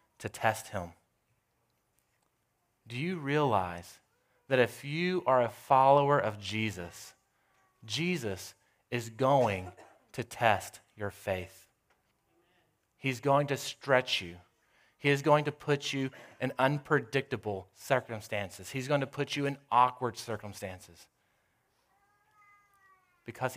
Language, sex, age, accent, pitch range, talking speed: English, male, 30-49, American, 100-130 Hz, 110 wpm